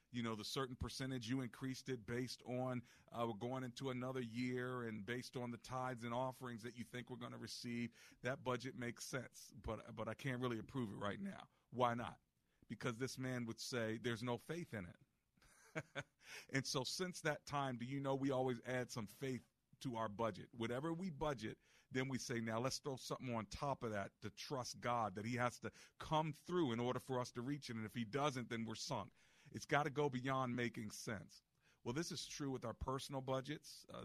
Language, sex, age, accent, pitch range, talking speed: English, male, 40-59, American, 115-135 Hz, 215 wpm